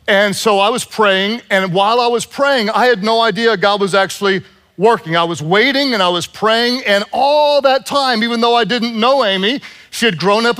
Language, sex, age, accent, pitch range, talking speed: English, male, 40-59, American, 200-265 Hz, 220 wpm